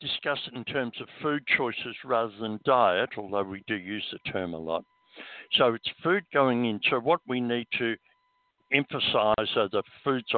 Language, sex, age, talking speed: English, male, 60-79, 185 wpm